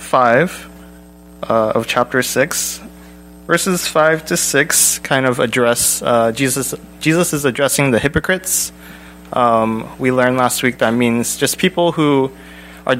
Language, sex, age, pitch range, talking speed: English, male, 20-39, 105-135 Hz, 140 wpm